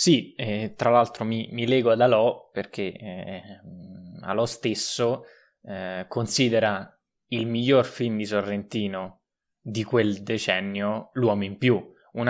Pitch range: 100-125 Hz